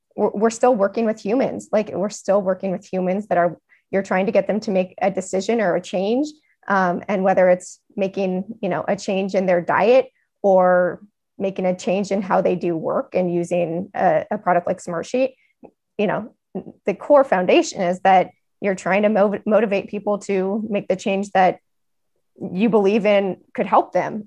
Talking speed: 190 wpm